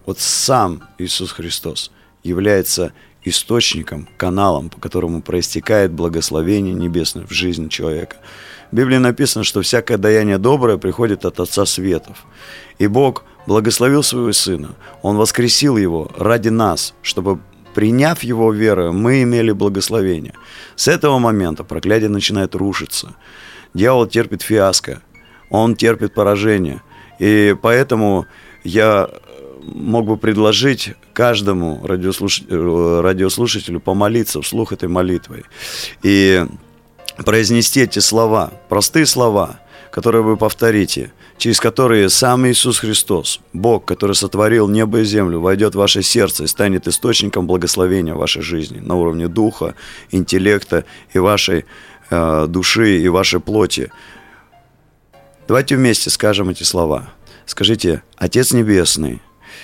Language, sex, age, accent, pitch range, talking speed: Russian, male, 30-49, native, 90-115 Hz, 120 wpm